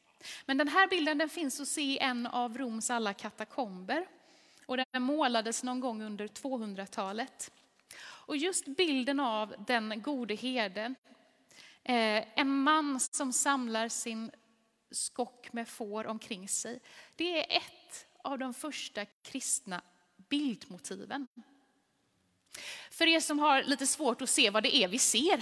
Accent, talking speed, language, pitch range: native, 130 wpm, Swedish, 215-285 Hz